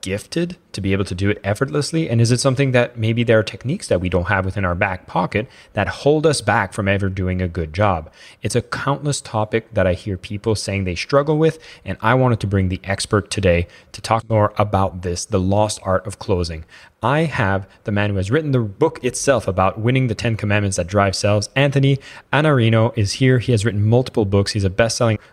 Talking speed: 225 wpm